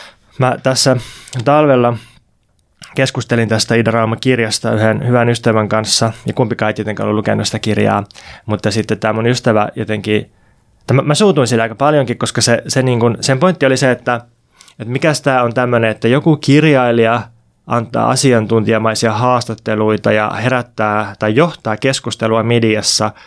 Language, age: Finnish, 20-39